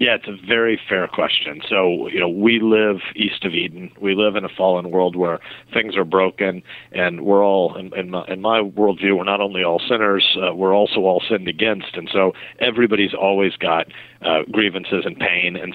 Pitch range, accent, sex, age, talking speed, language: 90-105 Hz, American, male, 50-69, 200 wpm, English